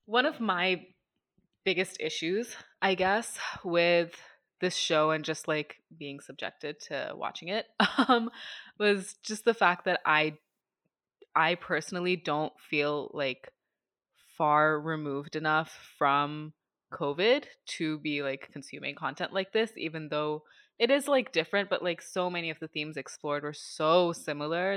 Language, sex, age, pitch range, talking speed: English, female, 20-39, 150-185 Hz, 145 wpm